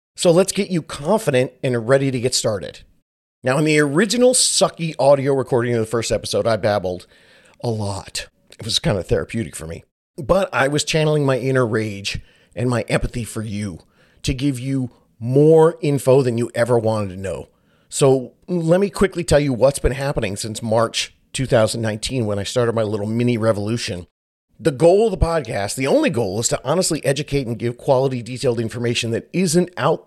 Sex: male